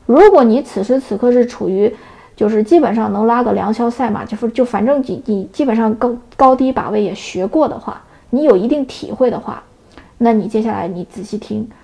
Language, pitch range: Chinese, 215-270 Hz